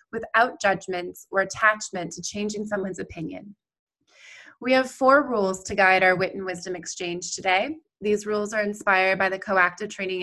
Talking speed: 165 wpm